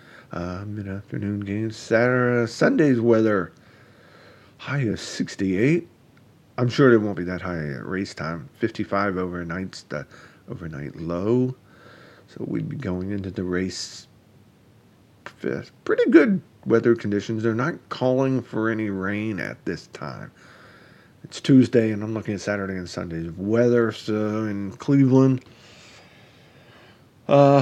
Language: English